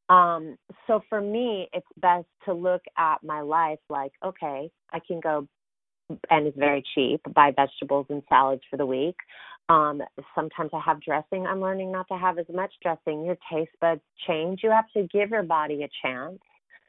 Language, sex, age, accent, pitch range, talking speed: English, female, 30-49, American, 155-190 Hz, 185 wpm